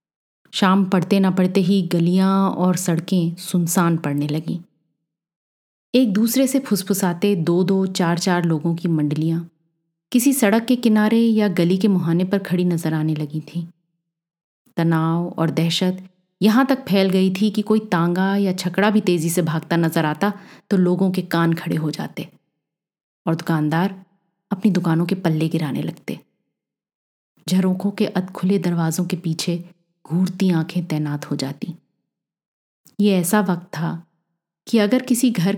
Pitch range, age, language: 165-195 Hz, 30-49, Hindi